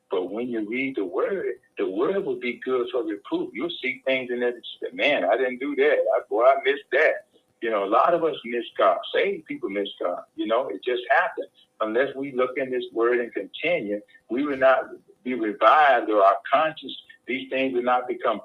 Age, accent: 50-69, American